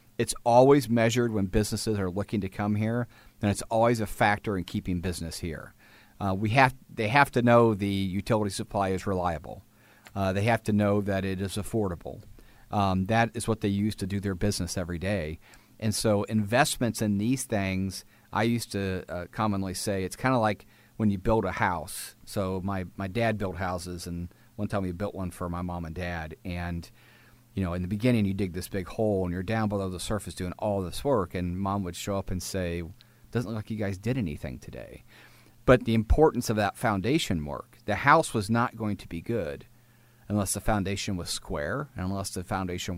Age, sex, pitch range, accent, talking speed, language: 40-59, male, 95-115 Hz, American, 210 wpm, English